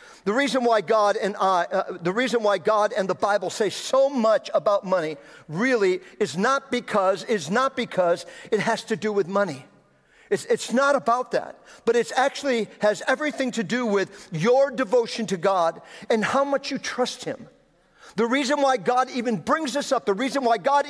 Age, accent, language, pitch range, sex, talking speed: 50-69, American, English, 200-250 Hz, male, 190 wpm